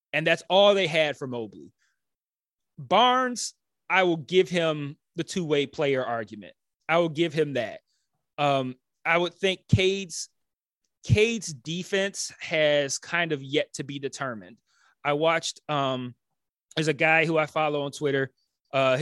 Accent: American